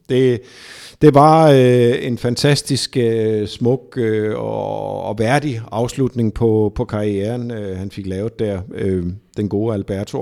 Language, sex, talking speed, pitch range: Danish, male, 145 wpm, 115-145 Hz